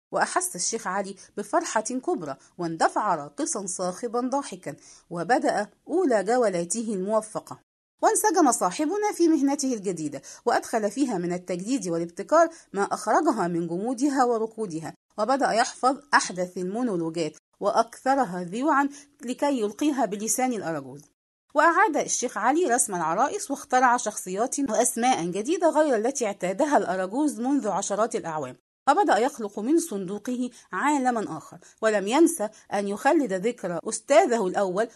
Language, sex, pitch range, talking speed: English, female, 190-275 Hz, 115 wpm